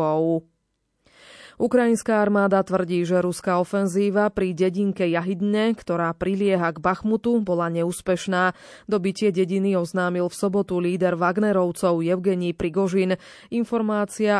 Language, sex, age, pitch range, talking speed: Slovak, female, 20-39, 175-210 Hz, 105 wpm